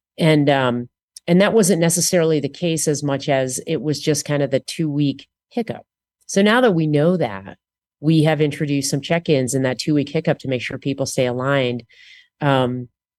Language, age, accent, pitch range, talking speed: English, 30-49, American, 130-160 Hz, 200 wpm